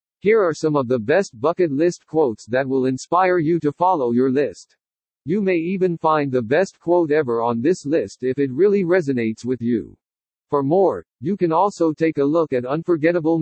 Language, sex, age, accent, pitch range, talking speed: English, male, 50-69, American, 135-175 Hz, 195 wpm